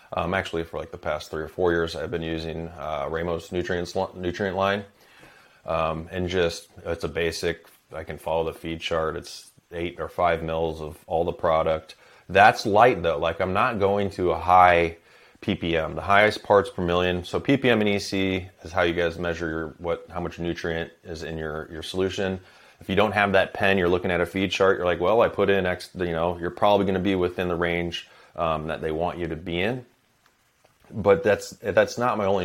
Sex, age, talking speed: male, 30-49, 215 wpm